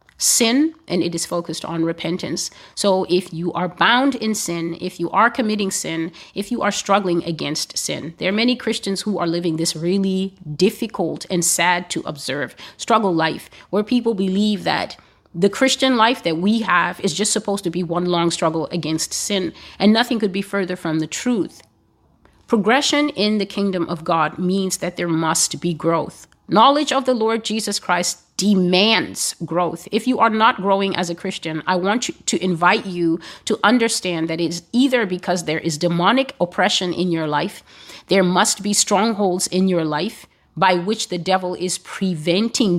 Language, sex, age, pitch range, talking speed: English, female, 30-49, 170-205 Hz, 180 wpm